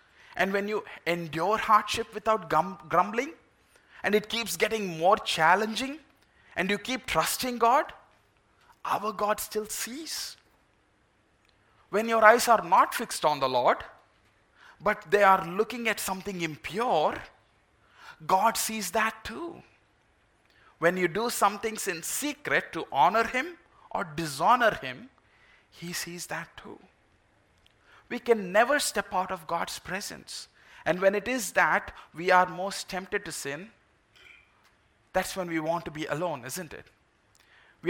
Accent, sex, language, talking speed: Indian, male, English, 140 wpm